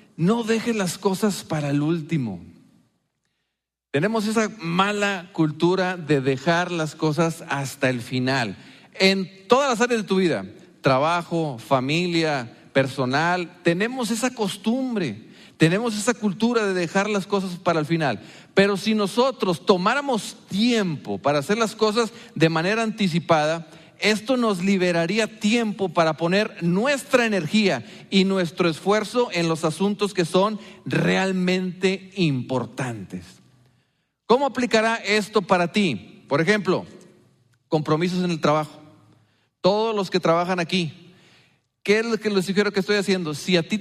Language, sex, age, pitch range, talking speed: English, male, 40-59, 160-215 Hz, 135 wpm